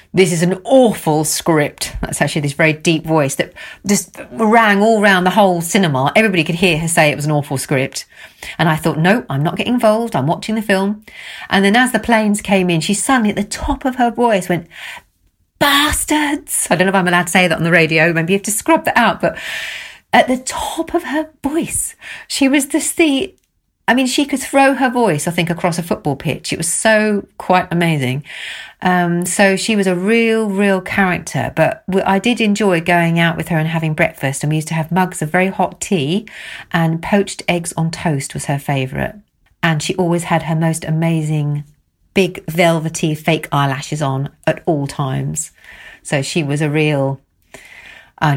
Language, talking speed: English, 205 wpm